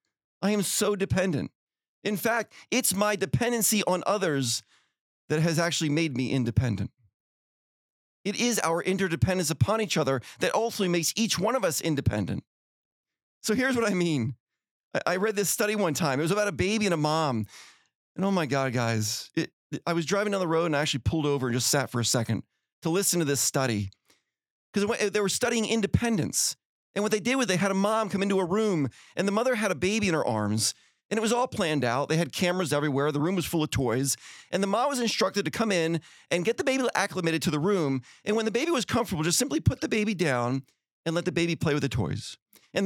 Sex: male